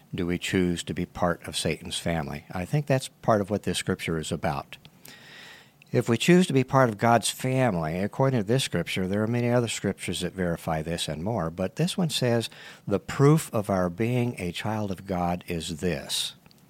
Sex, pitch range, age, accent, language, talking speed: male, 90-120 Hz, 50-69, American, English, 205 wpm